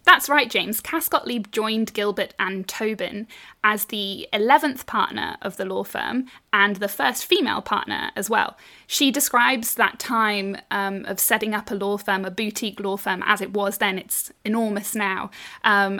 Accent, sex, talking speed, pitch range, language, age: British, female, 175 wpm, 200-240 Hz, English, 10-29